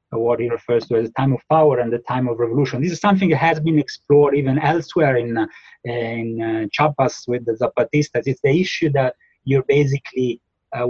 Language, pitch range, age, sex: English, 120-150 Hz, 30-49, male